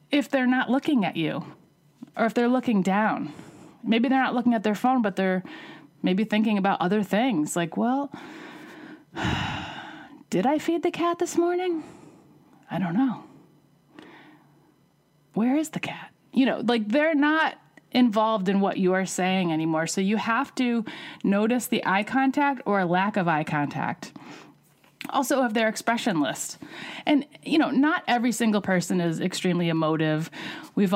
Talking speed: 160 wpm